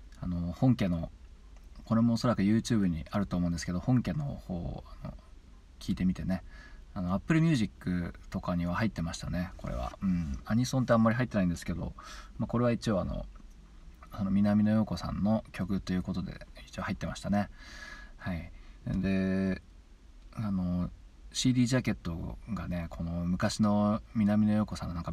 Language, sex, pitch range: Japanese, male, 85-105 Hz